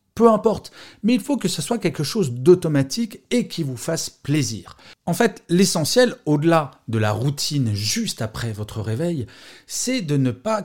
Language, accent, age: French, French, 40-59